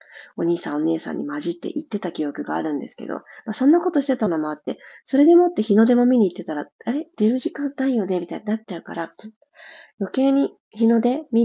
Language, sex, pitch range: Japanese, female, 185-270 Hz